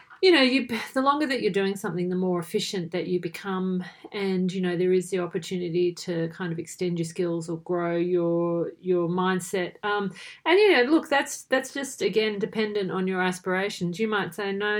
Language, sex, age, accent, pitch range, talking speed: English, female, 40-59, Australian, 180-210 Hz, 205 wpm